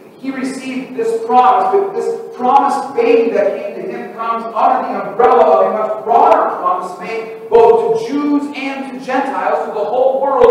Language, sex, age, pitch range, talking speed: English, male, 40-59, 190-270 Hz, 175 wpm